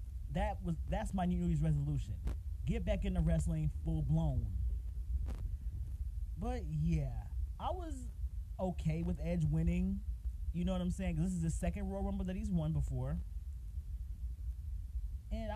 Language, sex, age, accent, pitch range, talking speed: English, male, 30-49, American, 75-95 Hz, 140 wpm